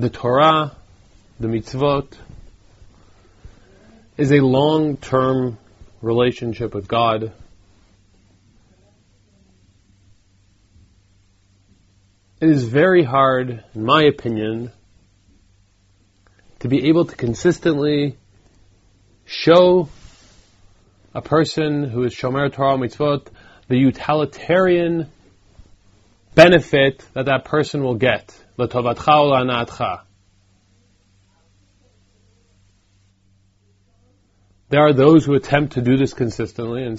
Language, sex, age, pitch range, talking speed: English, male, 30-49, 100-140 Hz, 80 wpm